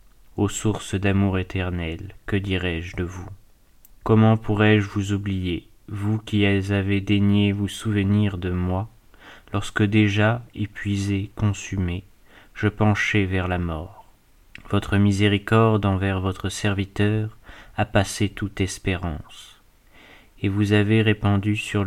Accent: French